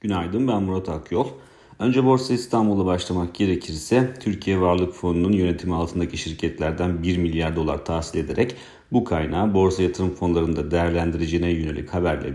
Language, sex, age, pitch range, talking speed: Turkish, male, 40-59, 80-95 Hz, 135 wpm